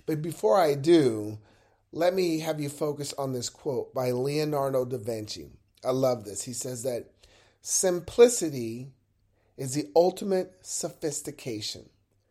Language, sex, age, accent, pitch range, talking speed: English, male, 40-59, American, 120-165 Hz, 130 wpm